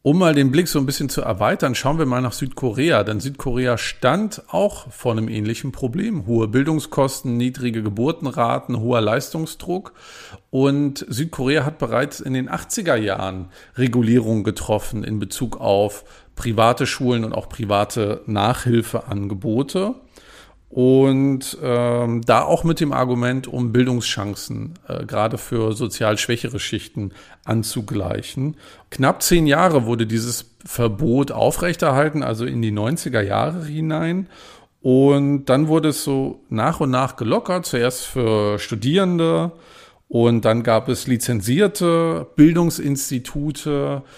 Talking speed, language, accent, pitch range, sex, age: 125 wpm, German, German, 115-145 Hz, male, 50-69